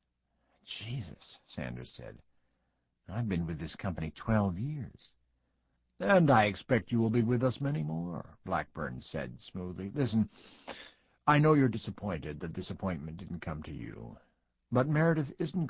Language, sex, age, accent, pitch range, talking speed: English, male, 60-79, American, 75-115 Hz, 145 wpm